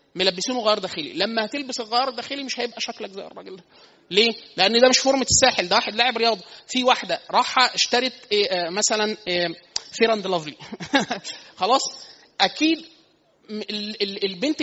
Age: 30-49